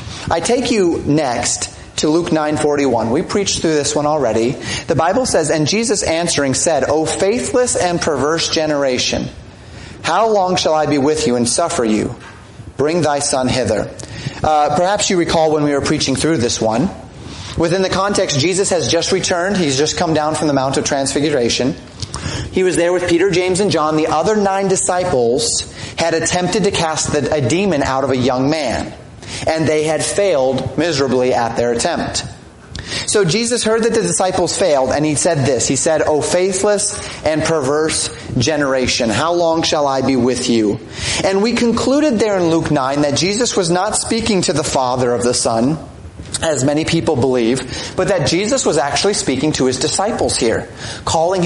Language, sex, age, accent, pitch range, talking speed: English, male, 30-49, American, 135-185 Hz, 180 wpm